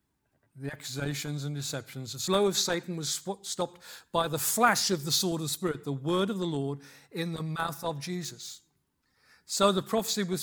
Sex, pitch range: male, 140-185 Hz